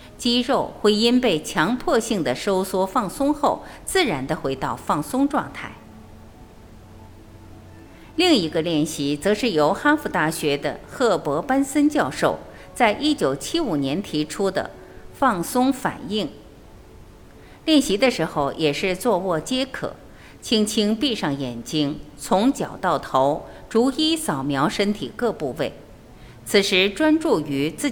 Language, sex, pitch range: Chinese, female, 150-245 Hz